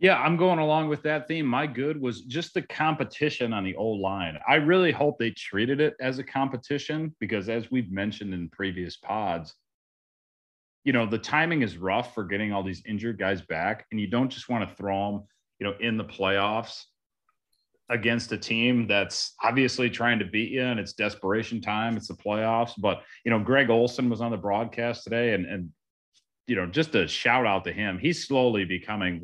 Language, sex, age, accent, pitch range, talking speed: English, male, 30-49, American, 95-125 Hz, 200 wpm